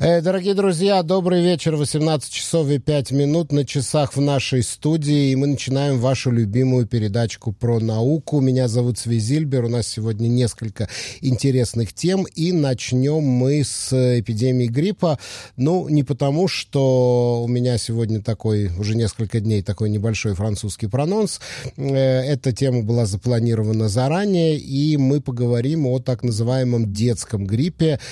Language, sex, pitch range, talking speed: English, male, 115-140 Hz, 140 wpm